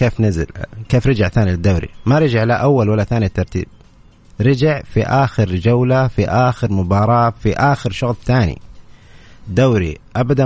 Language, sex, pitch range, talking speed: Arabic, male, 100-130 Hz, 150 wpm